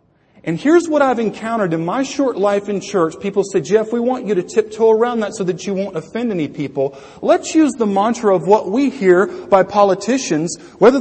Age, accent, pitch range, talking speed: 40-59, American, 200-280 Hz, 215 wpm